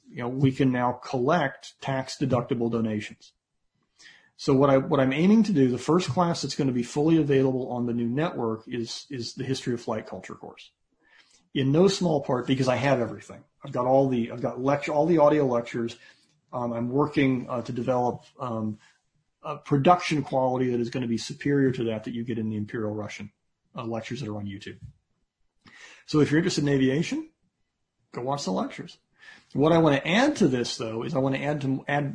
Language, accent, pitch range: English, American, 125-150 Hz